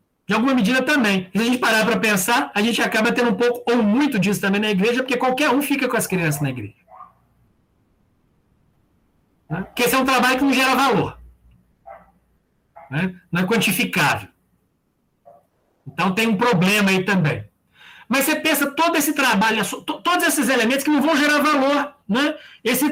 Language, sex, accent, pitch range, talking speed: Portuguese, male, Brazilian, 185-270 Hz, 175 wpm